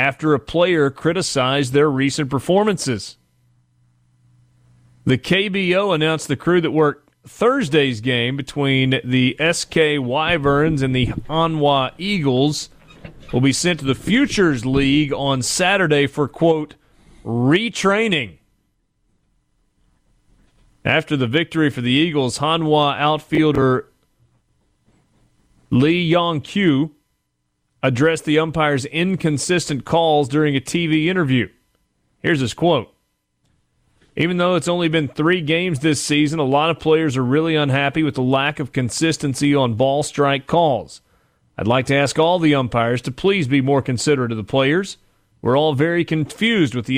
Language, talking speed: English, 135 wpm